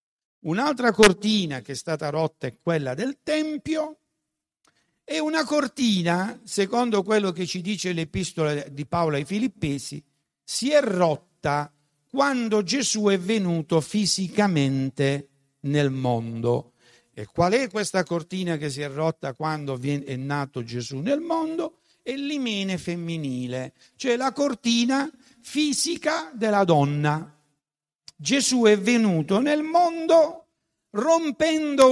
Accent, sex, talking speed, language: native, male, 120 wpm, Italian